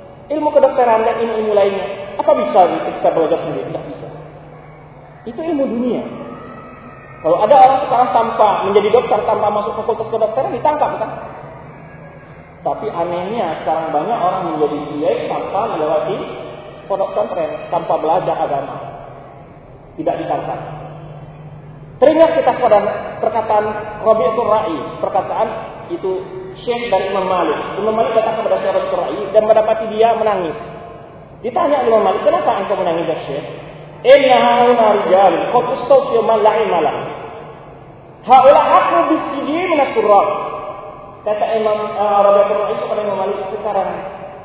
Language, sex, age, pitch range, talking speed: Malay, male, 40-59, 165-235 Hz, 125 wpm